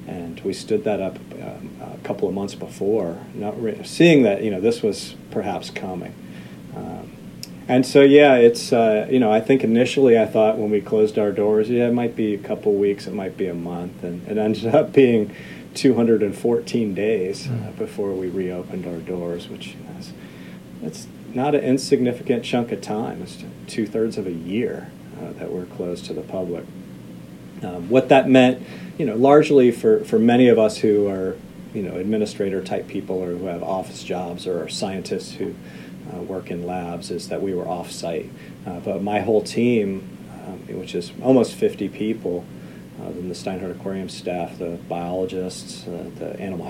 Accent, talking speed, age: American, 190 wpm, 40-59